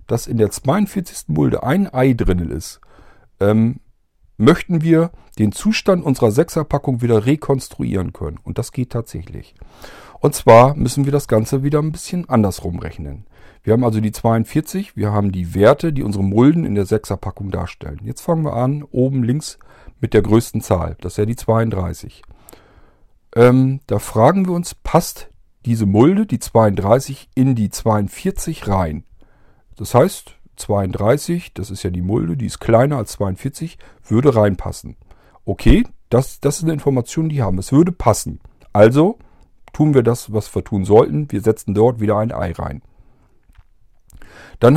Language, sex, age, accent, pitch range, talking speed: German, male, 50-69, German, 105-140 Hz, 165 wpm